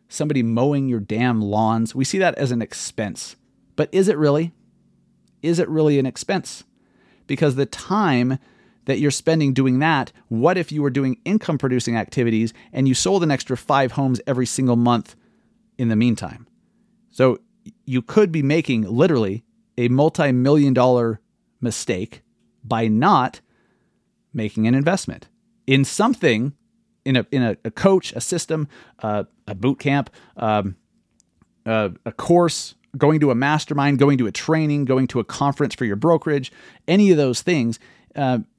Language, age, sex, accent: English, 30-49, male, American